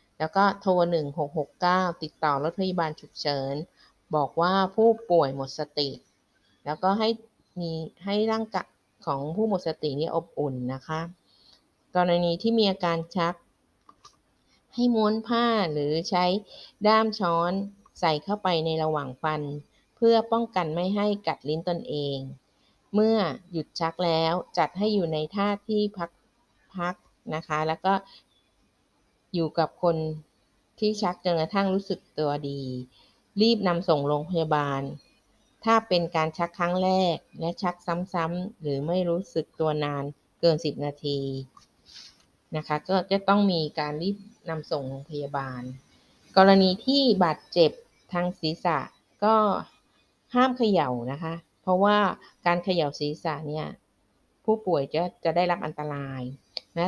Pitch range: 150-195 Hz